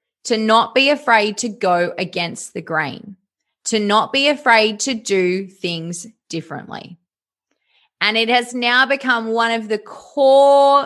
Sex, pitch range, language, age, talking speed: female, 190-245 Hz, English, 20-39, 145 wpm